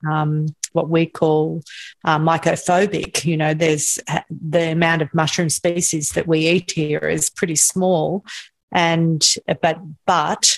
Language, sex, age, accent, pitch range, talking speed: English, female, 40-59, Australian, 155-195 Hz, 135 wpm